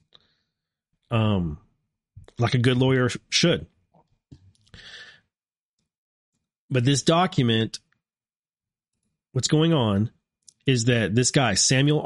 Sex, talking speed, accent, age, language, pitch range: male, 85 wpm, American, 30-49, English, 105-135 Hz